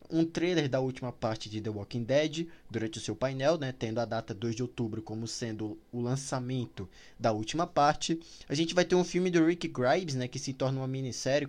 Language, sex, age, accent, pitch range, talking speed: Portuguese, male, 20-39, Brazilian, 120-165 Hz, 220 wpm